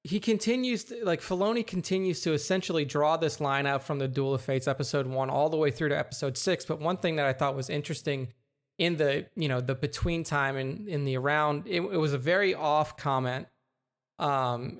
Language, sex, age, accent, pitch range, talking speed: English, male, 30-49, American, 135-165 Hz, 215 wpm